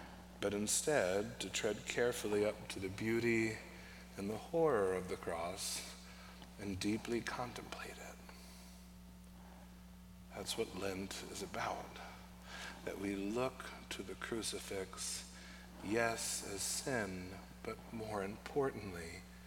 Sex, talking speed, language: male, 110 wpm, English